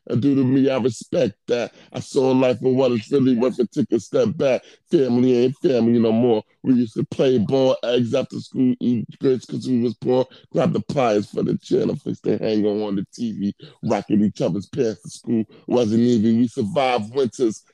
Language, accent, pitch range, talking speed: English, American, 110-130 Hz, 215 wpm